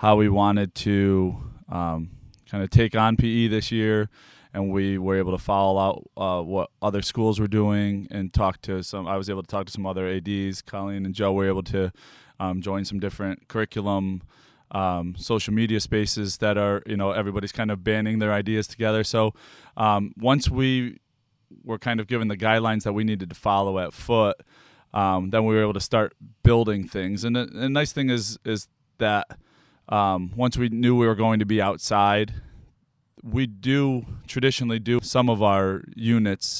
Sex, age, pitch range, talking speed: male, 20-39, 100-115 Hz, 190 wpm